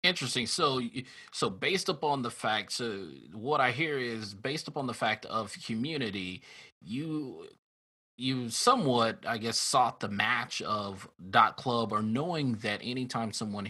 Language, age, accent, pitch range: English, 30-49, American, 100-120 Hz